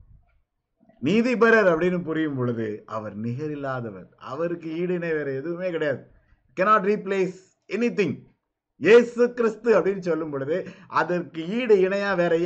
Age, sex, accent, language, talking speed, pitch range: 50-69, male, native, Tamil, 115 wpm, 125-175 Hz